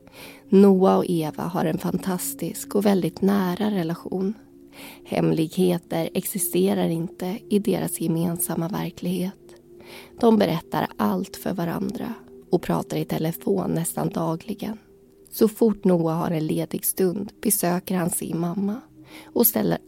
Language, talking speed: Swedish, 125 wpm